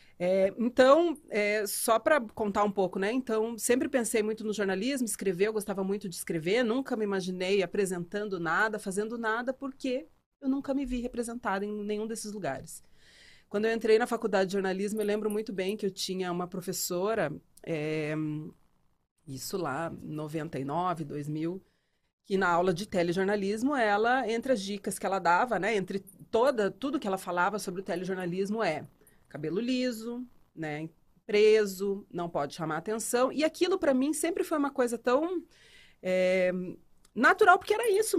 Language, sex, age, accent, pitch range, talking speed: Portuguese, female, 30-49, Brazilian, 185-230 Hz, 165 wpm